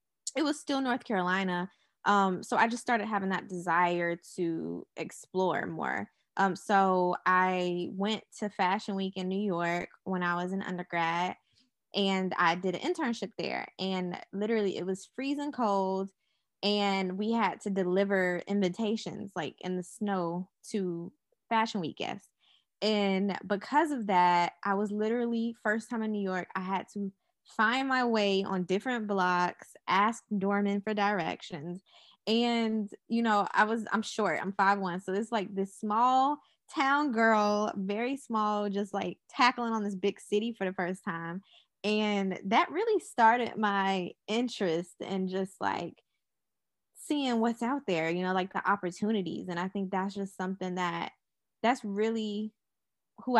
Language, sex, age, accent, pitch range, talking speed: English, female, 10-29, American, 185-220 Hz, 155 wpm